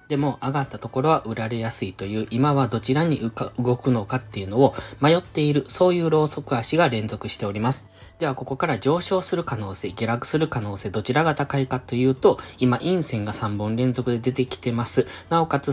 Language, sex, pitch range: Japanese, male, 110-150 Hz